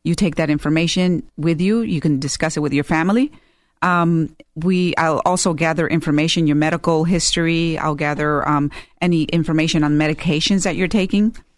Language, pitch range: English, 150-180 Hz